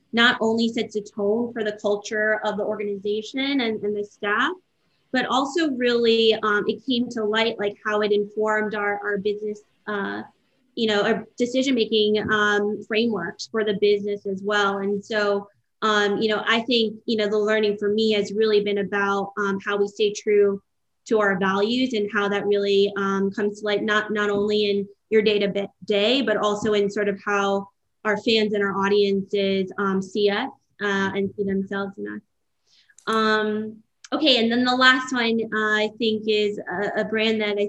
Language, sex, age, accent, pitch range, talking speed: English, female, 20-39, American, 205-220 Hz, 190 wpm